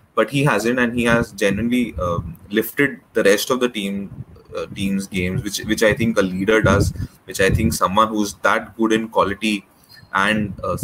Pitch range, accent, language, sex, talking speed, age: 105-130 Hz, Indian, English, male, 195 wpm, 20-39